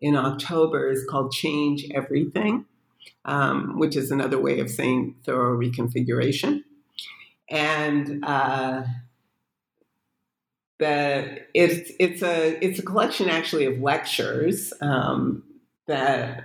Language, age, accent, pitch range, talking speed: English, 50-69, American, 135-170 Hz, 105 wpm